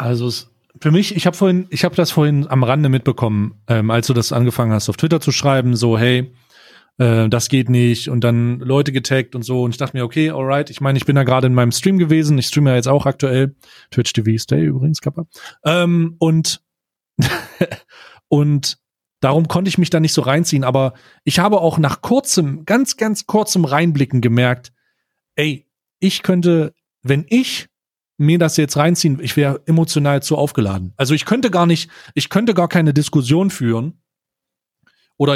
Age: 30-49